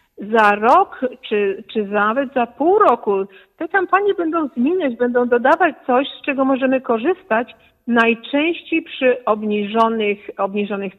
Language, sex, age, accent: Polish, female, 50-69, native